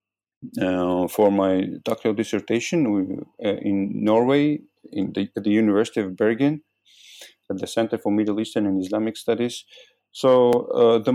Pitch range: 100-120 Hz